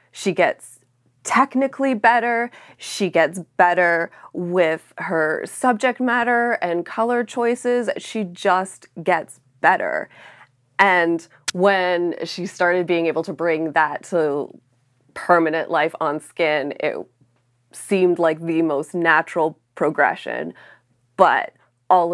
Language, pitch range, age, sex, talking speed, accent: English, 155-180 Hz, 20-39, female, 110 wpm, American